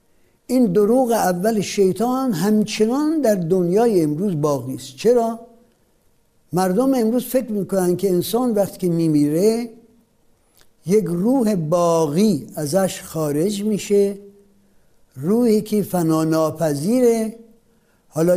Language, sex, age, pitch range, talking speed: Persian, male, 60-79, 155-220 Hz, 95 wpm